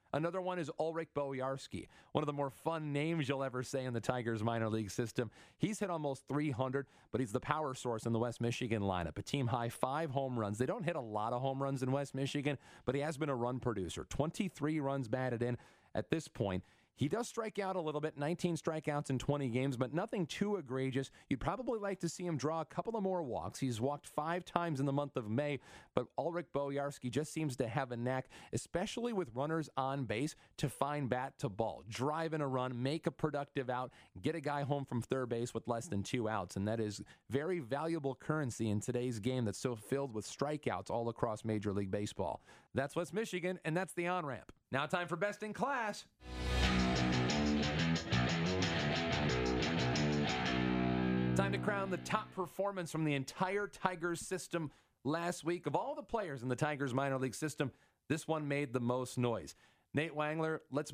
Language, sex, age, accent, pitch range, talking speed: English, male, 40-59, American, 115-155 Hz, 200 wpm